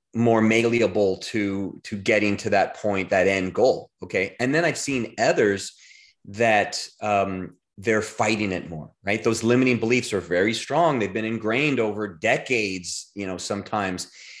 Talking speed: 160 wpm